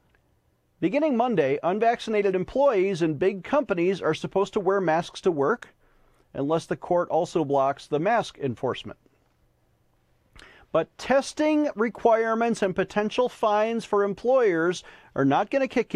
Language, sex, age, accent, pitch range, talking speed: English, male, 40-59, American, 140-210 Hz, 130 wpm